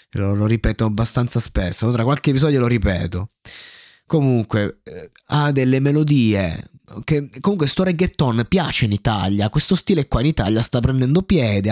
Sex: male